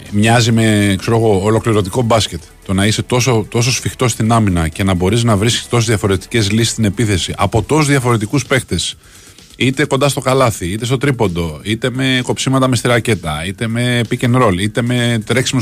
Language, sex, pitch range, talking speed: Greek, male, 90-115 Hz, 180 wpm